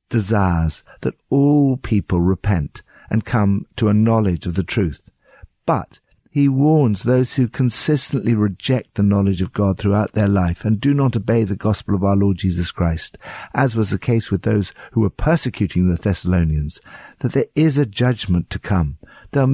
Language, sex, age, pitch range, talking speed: English, male, 60-79, 95-125 Hz, 175 wpm